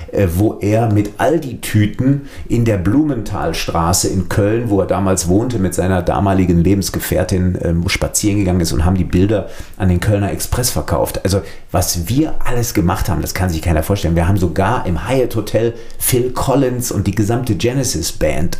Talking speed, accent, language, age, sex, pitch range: 175 wpm, German, German, 50-69, male, 85-105 Hz